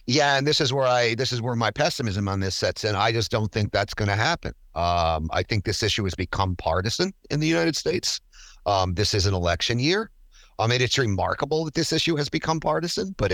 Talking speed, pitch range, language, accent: 230 wpm, 105-140 Hz, English, American